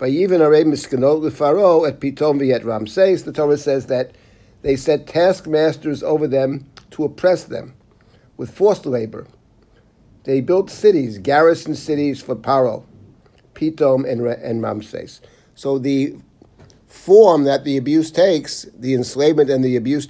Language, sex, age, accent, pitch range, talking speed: English, male, 60-79, American, 125-155 Hz, 140 wpm